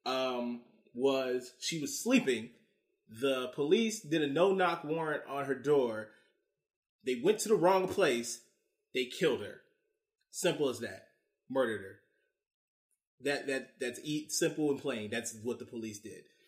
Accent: American